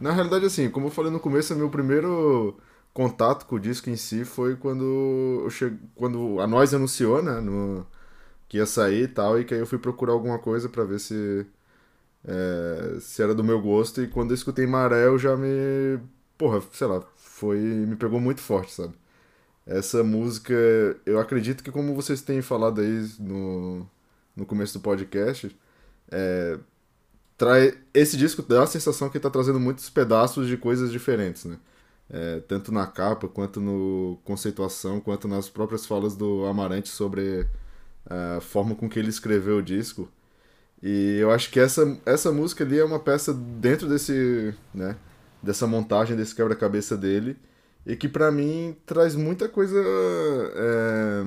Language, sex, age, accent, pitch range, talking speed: Portuguese, male, 10-29, Brazilian, 100-135 Hz, 170 wpm